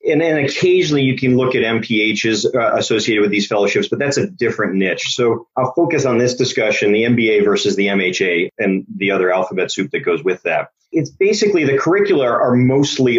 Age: 30-49